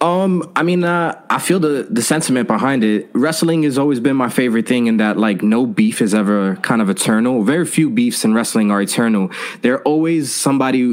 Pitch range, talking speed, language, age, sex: 115-185 Hz, 210 wpm, English, 20-39, male